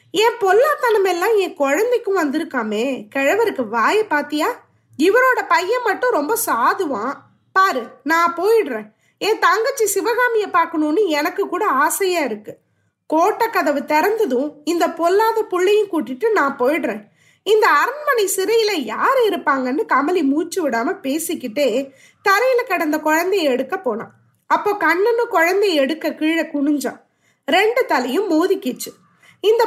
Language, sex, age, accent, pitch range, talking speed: Tamil, female, 20-39, native, 290-415 Hz, 115 wpm